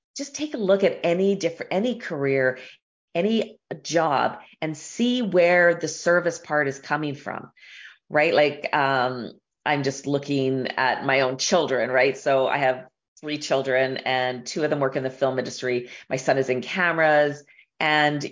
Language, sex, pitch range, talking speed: English, female, 135-165 Hz, 165 wpm